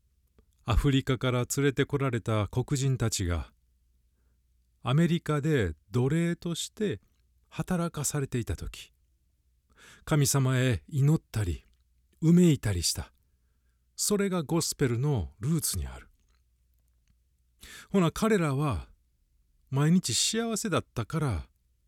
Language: Japanese